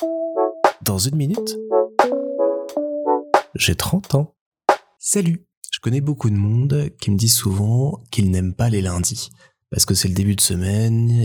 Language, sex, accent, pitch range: French, male, French, 95-115 Hz